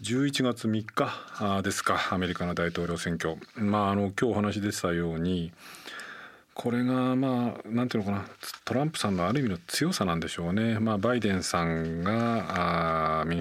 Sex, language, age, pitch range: male, Japanese, 40-59, 85-105 Hz